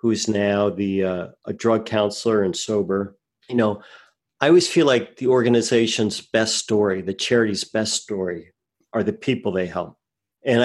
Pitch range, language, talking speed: 100-115 Hz, English, 165 wpm